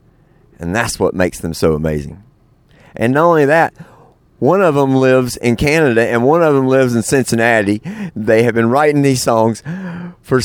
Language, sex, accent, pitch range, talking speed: English, male, American, 105-145 Hz, 180 wpm